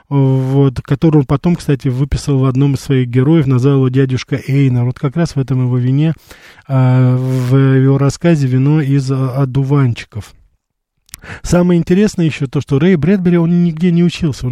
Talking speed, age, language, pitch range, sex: 165 wpm, 20-39, Russian, 130-155 Hz, male